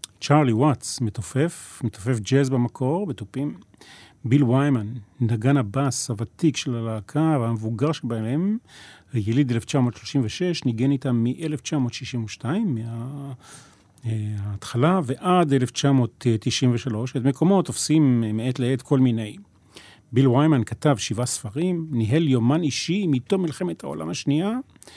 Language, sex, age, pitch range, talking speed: Hebrew, male, 40-59, 115-150 Hz, 105 wpm